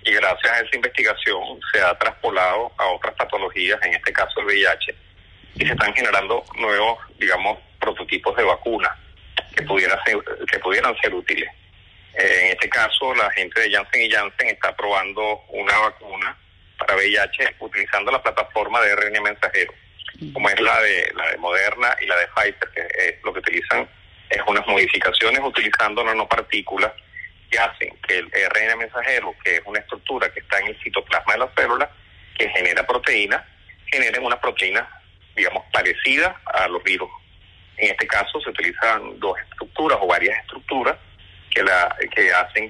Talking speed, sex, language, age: 160 wpm, male, Spanish, 30-49